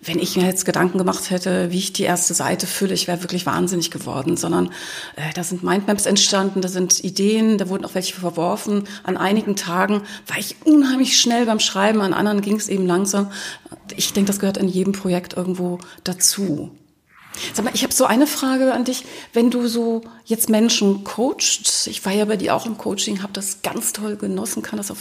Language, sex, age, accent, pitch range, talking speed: German, female, 30-49, German, 185-225 Hz, 210 wpm